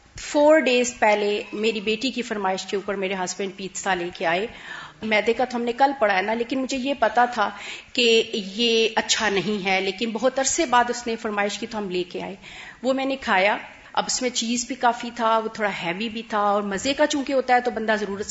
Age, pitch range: 40-59, 215-250 Hz